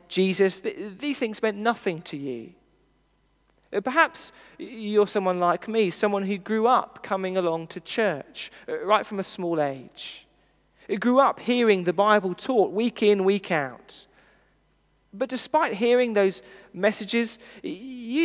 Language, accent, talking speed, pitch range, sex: English, British, 140 wpm, 180-240 Hz, male